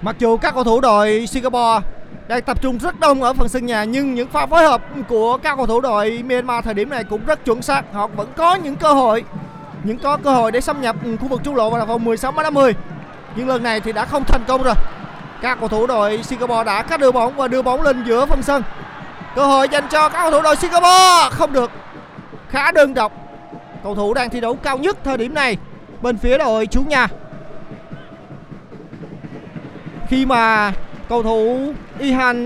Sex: male